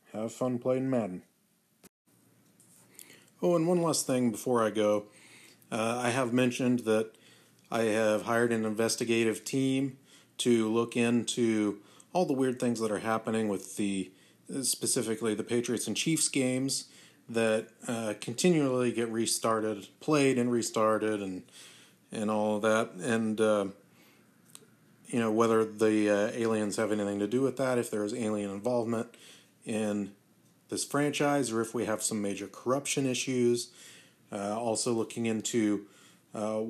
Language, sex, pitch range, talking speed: English, male, 105-125 Hz, 145 wpm